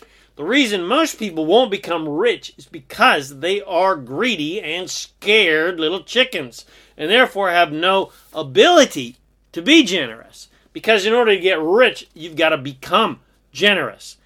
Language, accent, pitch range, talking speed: English, American, 160-195 Hz, 145 wpm